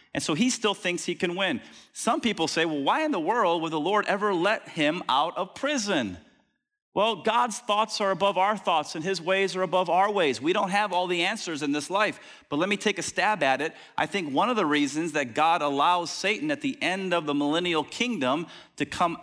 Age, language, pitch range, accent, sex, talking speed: 40-59, English, 145-205 Hz, American, male, 235 wpm